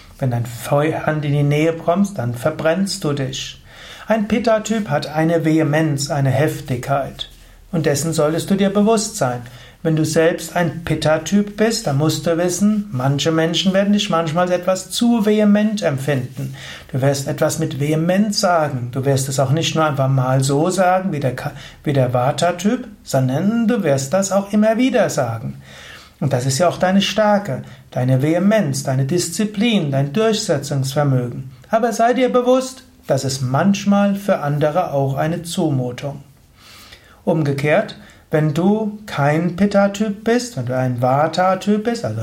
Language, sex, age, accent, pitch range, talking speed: German, male, 60-79, German, 140-195 Hz, 160 wpm